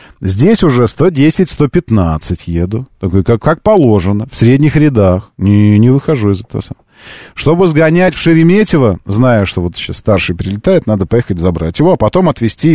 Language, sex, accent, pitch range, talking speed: Russian, male, native, 100-145 Hz, 160 wpm